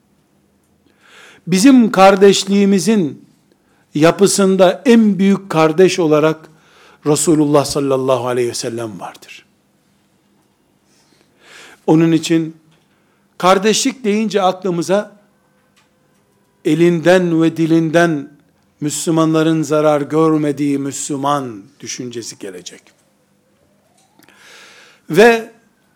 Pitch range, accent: 155-205 Hz, native